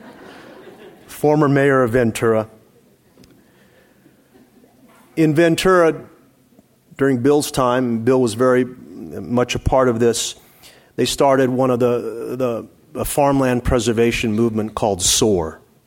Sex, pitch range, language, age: male, 110-125 Hz, English, 40-59